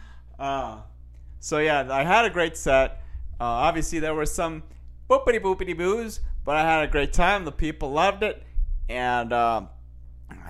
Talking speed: 160 wpm